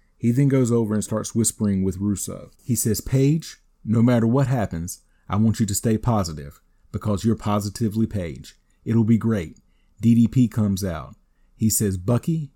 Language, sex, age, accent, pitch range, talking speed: English, male, 30-49, American, 95-115 Hz, 165 wpm